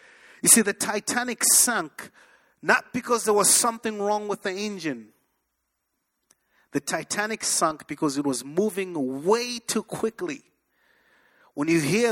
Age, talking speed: 30-49, 135 wpm